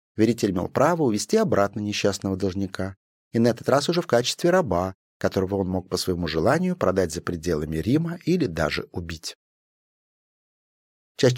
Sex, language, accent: male, Russian, native